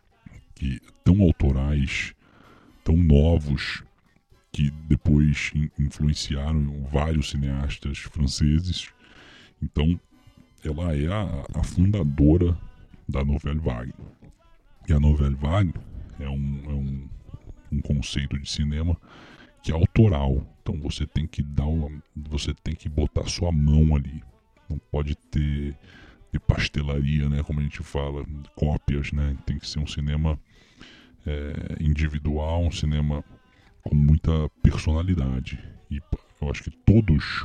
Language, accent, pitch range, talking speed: Portuguese, Brazilian, 70-85 Hz, 125 wpm